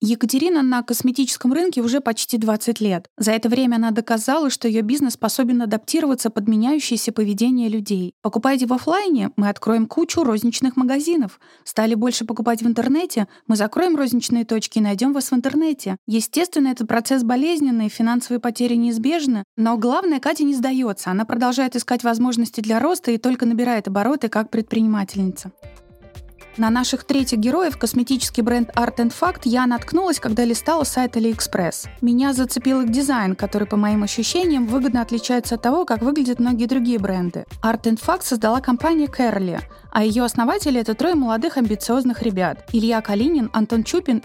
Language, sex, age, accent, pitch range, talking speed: Russian, female, 20-39, native, 225-265 Hz, 165 wpm